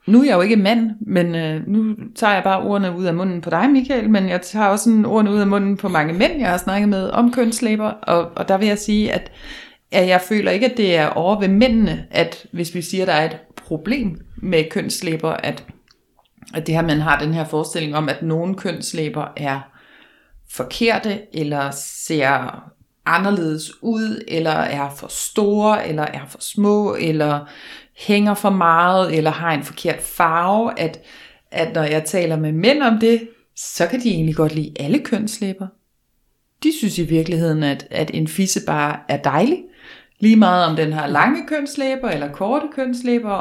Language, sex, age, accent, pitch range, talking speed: Danish, female, 30-49, native, 160-225 Hz, 190 wpm